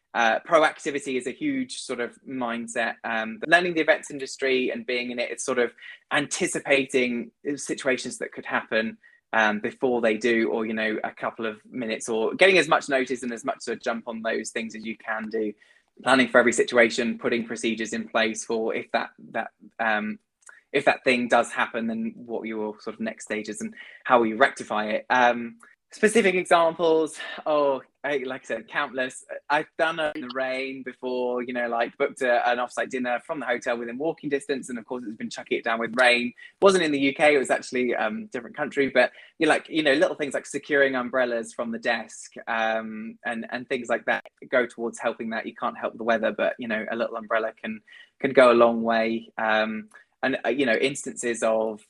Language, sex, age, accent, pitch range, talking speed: English, male, 20-39, British, 115-140 Hz, 215 wpm